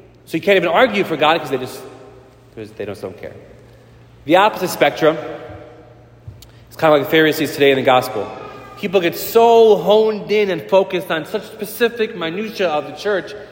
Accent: American